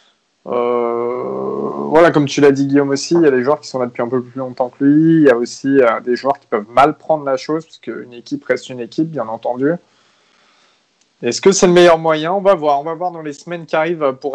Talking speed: 260 wpm